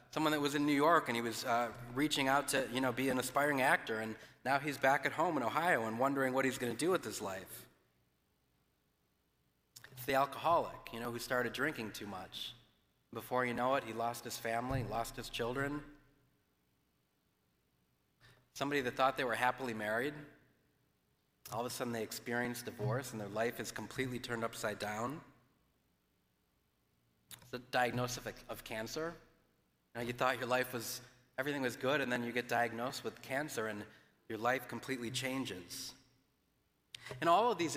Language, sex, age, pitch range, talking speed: English, male, 30-49, 115-140 Hz, 175 wpm